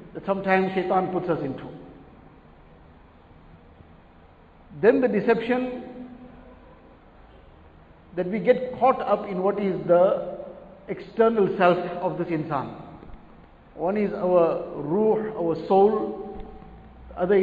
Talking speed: 105 wpm